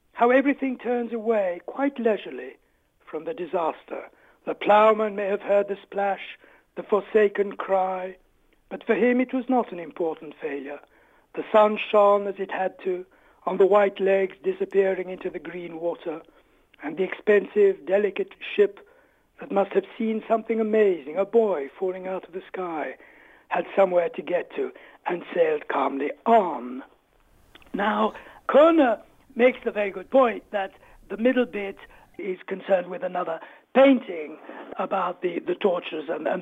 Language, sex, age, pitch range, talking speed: English, male, 60-79, 195-260 Hz, 155 wpm